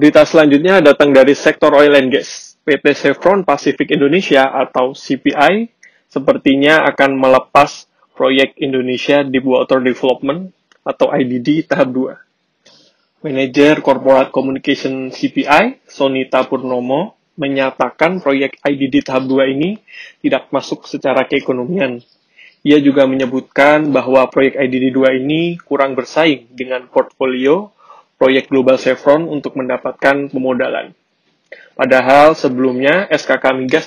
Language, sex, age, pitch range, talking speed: Indonesian, male, 20-39, 130-150 Hz, 115 wpm